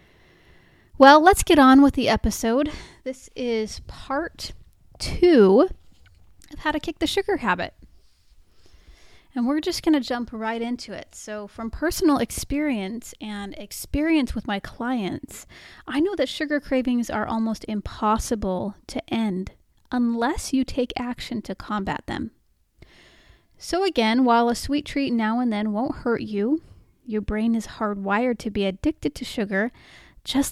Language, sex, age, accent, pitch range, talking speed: English, female, 30-49, American, 210-275 Hz, 145 wpm